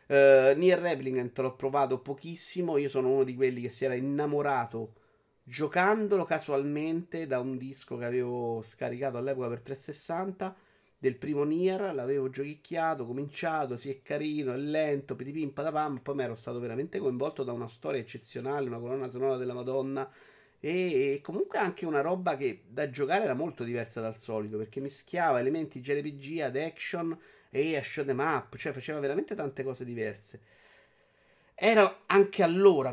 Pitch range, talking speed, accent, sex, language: 120-150 Hz, 160 wpm, native, male, Italian